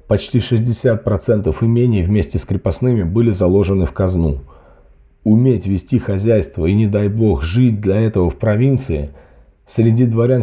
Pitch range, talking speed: 100-125 Hz, 140 wpm